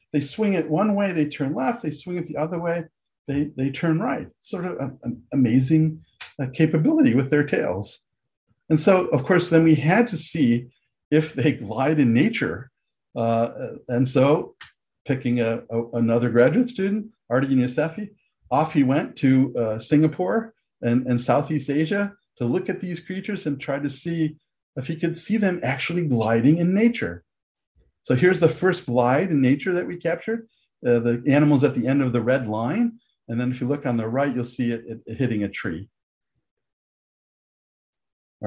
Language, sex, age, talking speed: English, male, 50-69, 180 wpm